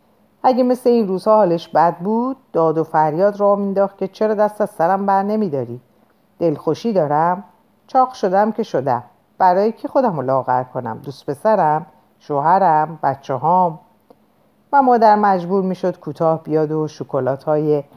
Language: Persian